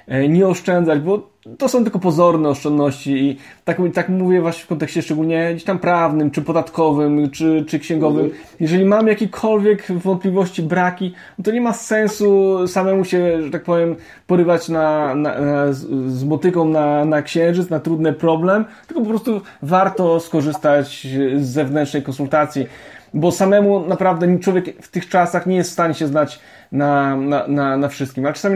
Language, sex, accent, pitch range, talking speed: Polish, male, native, 145-175 Hz, 165 wpm